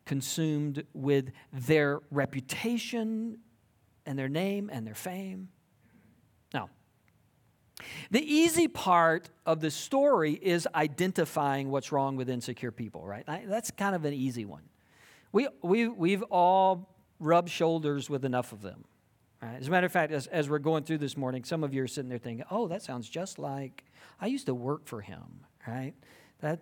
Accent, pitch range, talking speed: American, 135-195 Hz, 165 wpm